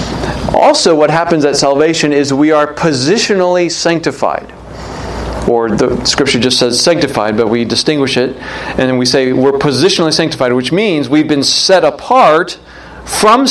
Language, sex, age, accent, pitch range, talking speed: English, male, 40-59, American, 130-160 Hz, 145 wpm